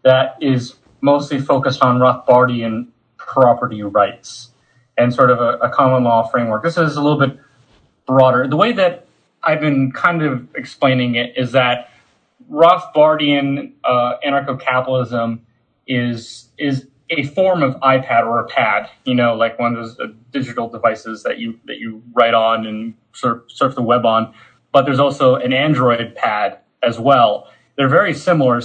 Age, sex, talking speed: 30-49, male, 160 wpm